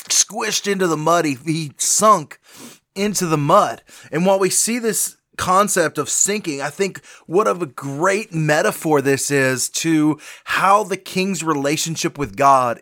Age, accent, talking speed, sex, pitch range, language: 30-49, American, 160 wpm, male, 145-195 Hz, English